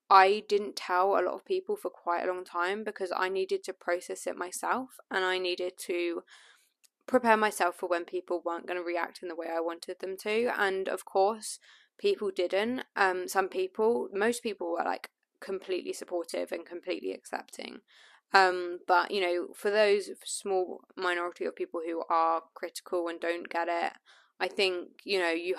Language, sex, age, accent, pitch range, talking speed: English, female, 10-29, British, 175-230 Hz, 185 wpm